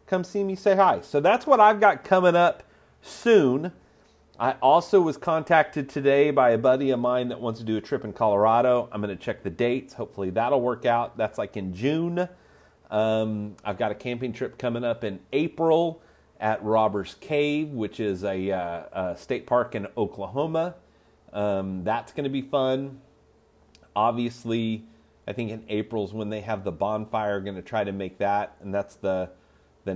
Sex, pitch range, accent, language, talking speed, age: male, 95-145 Hz, American, English, 185 wpm, 30-49